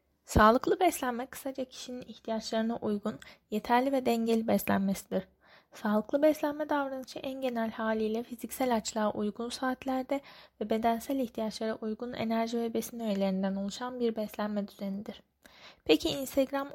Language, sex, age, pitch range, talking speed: Turkish, female, 10-29, 210-250 Hz, 120 wpm